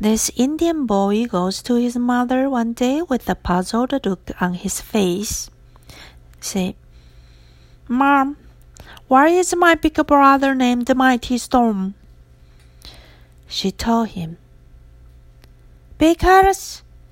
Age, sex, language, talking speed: 50-69, female, English, 105 wpm